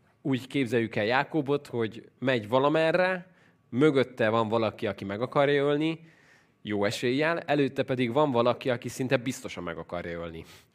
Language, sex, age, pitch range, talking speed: Hungarian, male, 20-39, 105-135 Hz, 145 wpm